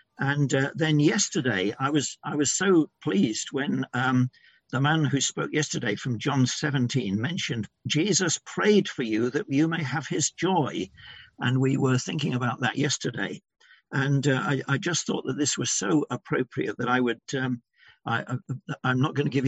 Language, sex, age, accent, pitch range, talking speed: English, male, 60-79, British, 125-165 Hz, 180 wpm